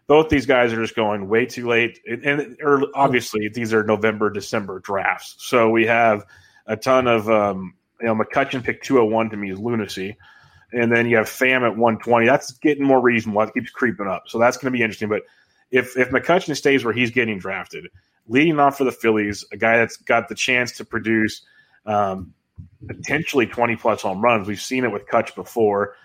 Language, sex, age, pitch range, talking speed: English, male, 30-49, 110-125 Hz, 200 wpm